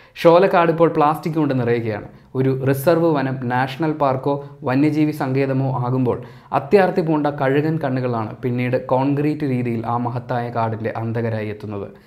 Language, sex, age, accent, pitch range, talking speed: Malayalam, male, 20-39, native, 120-145 Hz, 125 wpm